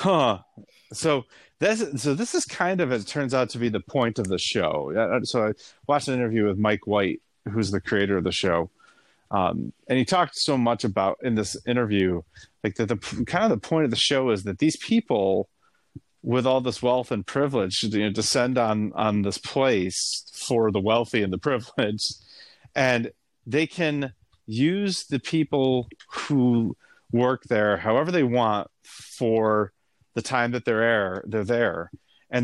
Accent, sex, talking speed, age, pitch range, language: American, male, 175 wpm, 30-49, 105-135 Hz, English